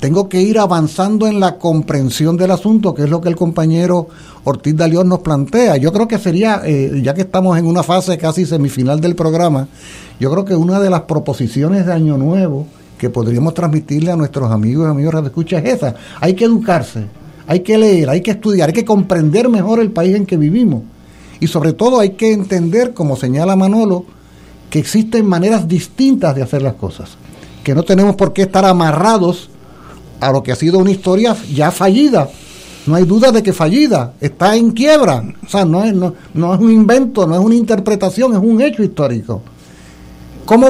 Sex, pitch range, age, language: male, 150-205 Hz, 60-79, Spanish